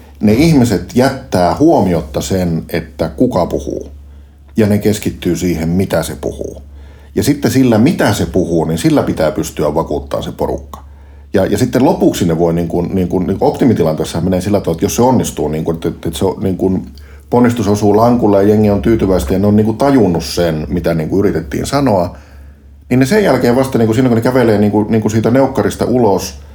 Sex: male